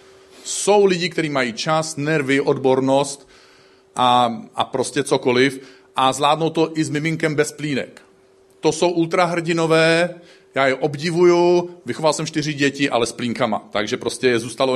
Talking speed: 145 wpm